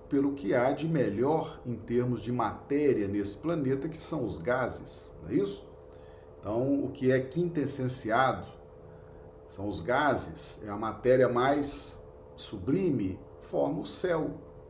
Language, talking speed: Portuguese, 140 wpm